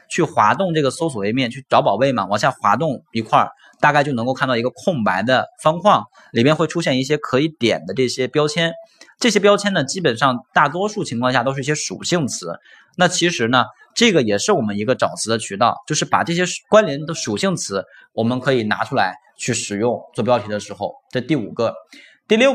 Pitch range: 120-175 Hz